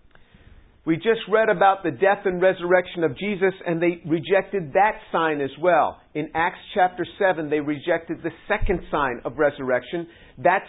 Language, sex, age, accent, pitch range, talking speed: English, male, 50-69, American, 145-180 Hz, 165 wpm